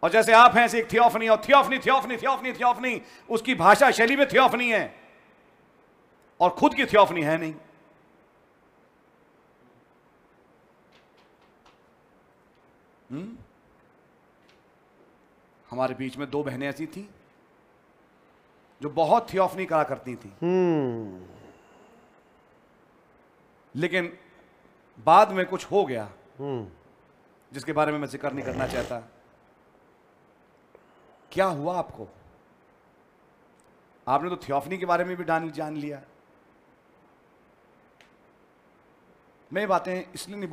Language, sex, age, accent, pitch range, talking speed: English, male, 40-59, Indian, 150-235 Hz, 105 wpm